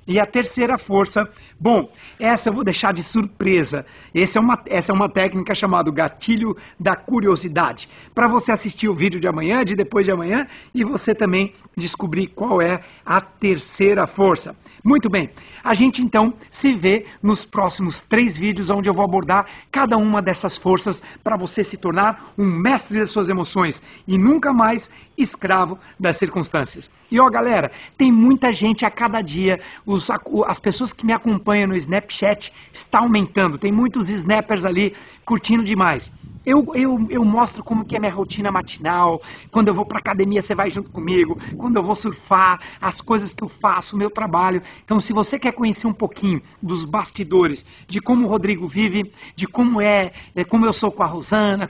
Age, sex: 60-79, male